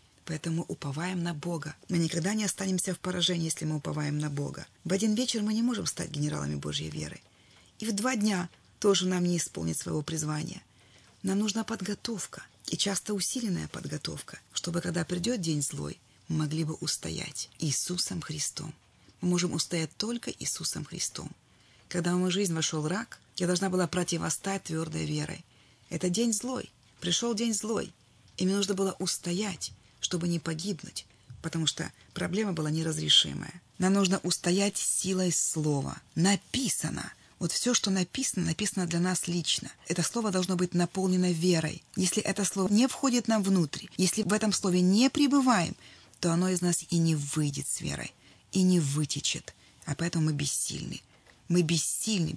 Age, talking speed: 30-49, 160 wpm